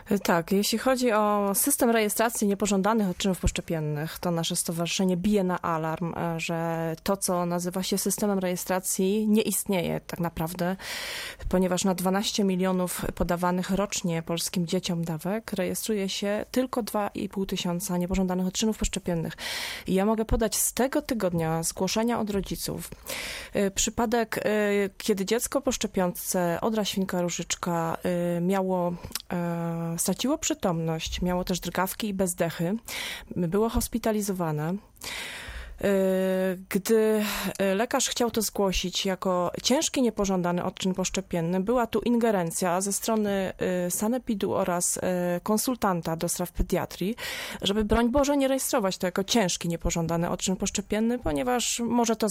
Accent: native